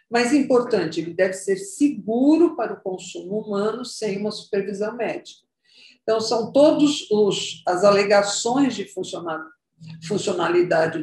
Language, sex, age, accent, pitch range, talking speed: Portuguese, female, 50-69, Brazilian, 180-225 Hz, 115 wpm